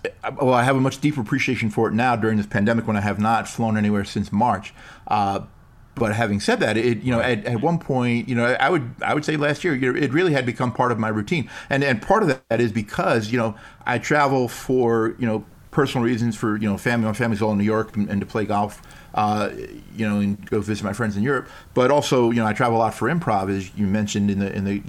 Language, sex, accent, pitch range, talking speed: English, male, American, 105-125 Hz, 265 wpm